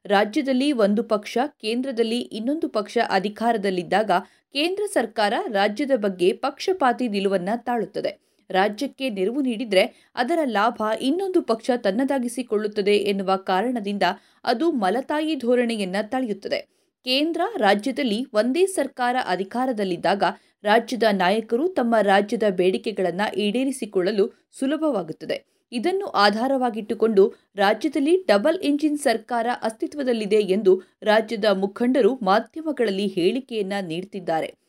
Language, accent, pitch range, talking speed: Kannada, native, 205-270 Hz, 90 wpm